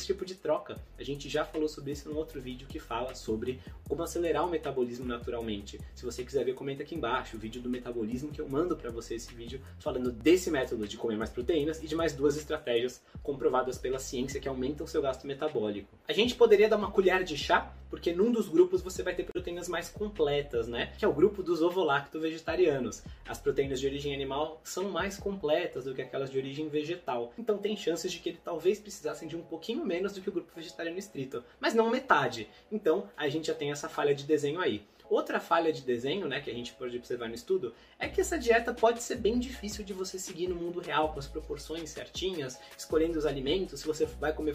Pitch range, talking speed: 140-210 Hz, 225 wpm